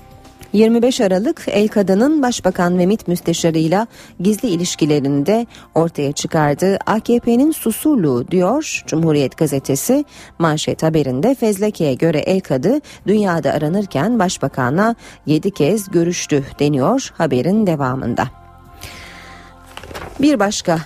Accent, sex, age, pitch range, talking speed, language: native, female, 40-59, 155-225 Hz, 100 wpm, Turkish